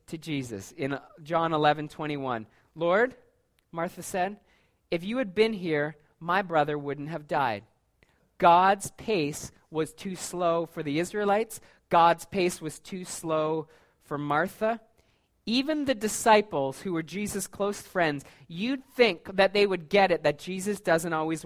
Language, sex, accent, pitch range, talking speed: English, male, American, 160-205 Hz, 145 wpm